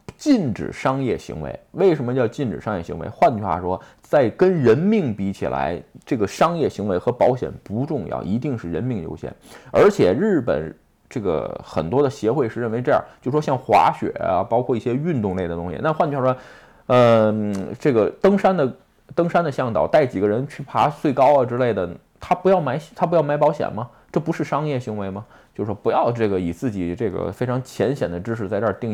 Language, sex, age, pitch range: Chinese, male, 20-39, 110-155 Hz